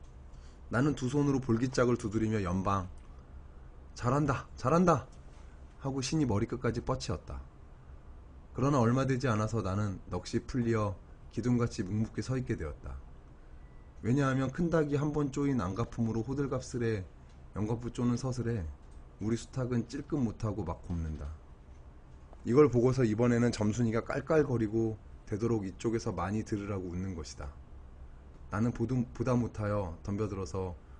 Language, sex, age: Korean, male, 20-39